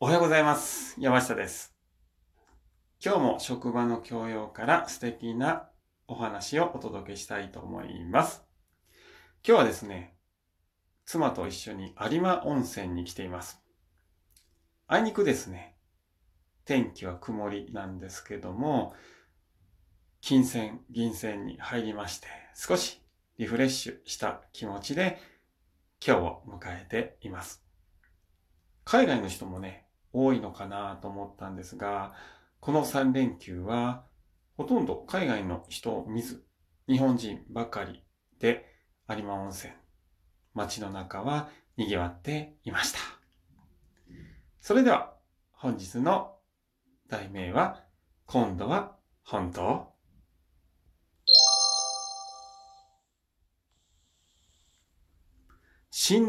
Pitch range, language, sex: 85-115 Hz, Japanese, male